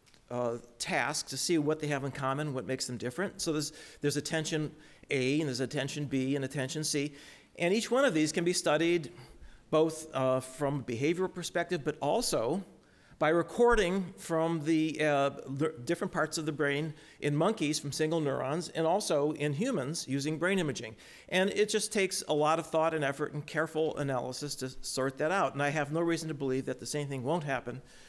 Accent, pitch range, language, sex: American, 140-180 Hz, English, male